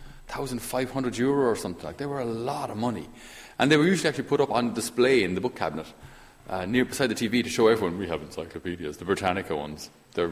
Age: 30-49